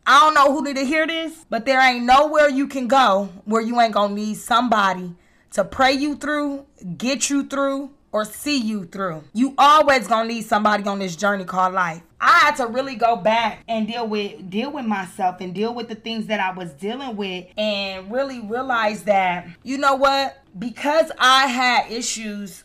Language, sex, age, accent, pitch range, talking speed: English, female, 20-39, American, 205-260 Hz, 205 wpm